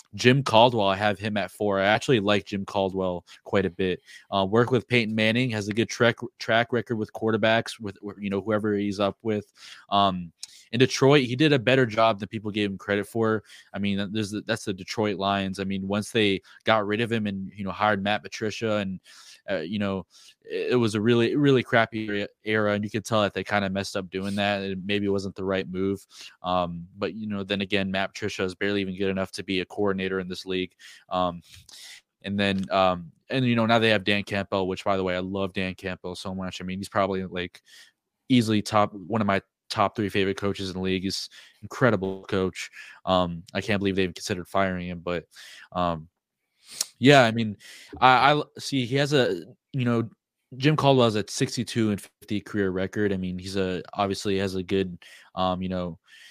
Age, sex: 20-39, male